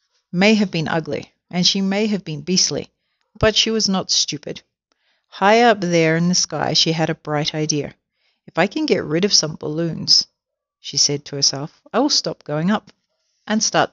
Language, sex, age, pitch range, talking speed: English, female, 50-69, 155-195 Hz, 195 wpm